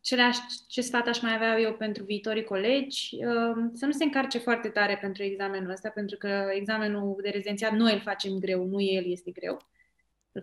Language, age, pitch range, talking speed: Romanian, 20-39, 200-245 Hz, 195 wpm